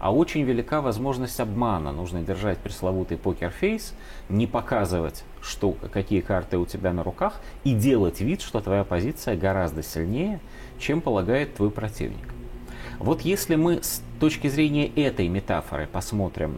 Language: Russian